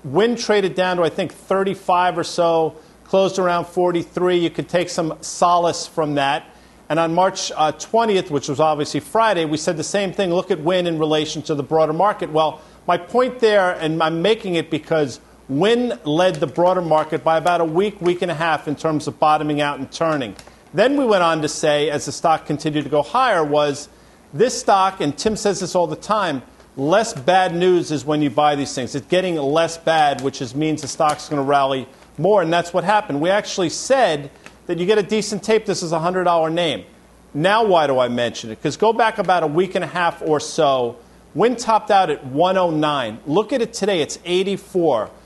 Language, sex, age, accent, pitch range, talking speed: English, male, 50-69, American, 155-190 Hz, 220 wpm